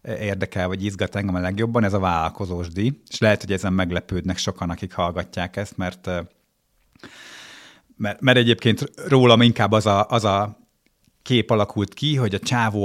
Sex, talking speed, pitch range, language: male, 165 wpm, 100-120 Hz, Hungarian